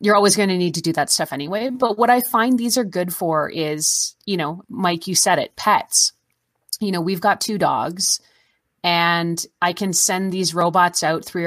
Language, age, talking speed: English, 30-49, 210 wpm